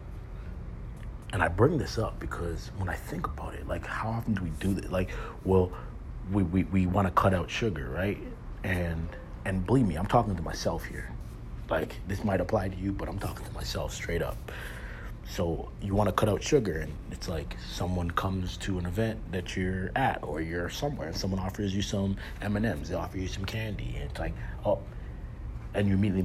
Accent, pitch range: American, 80-100 Hz